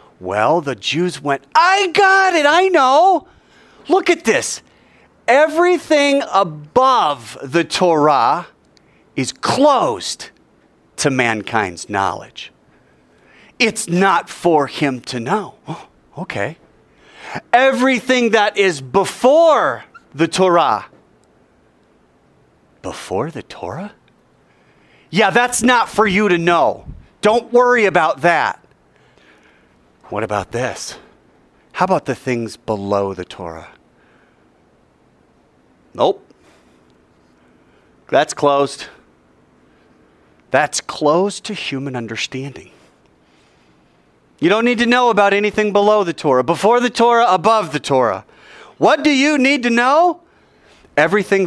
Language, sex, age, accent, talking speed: English, male, 40-59, American, 105 wpm